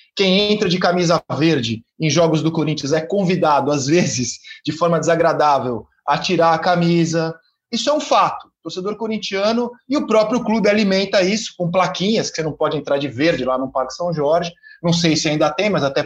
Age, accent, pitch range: 20-39, Brazilian, 165-225 Hz